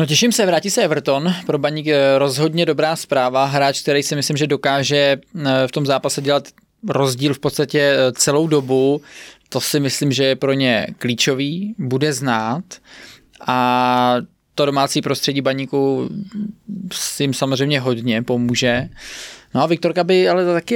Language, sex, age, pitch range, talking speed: Czech, male, 20-39, 135-150 Hz, 150 wpm